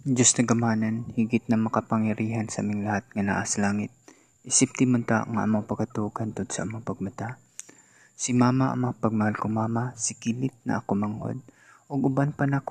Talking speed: 150 wpm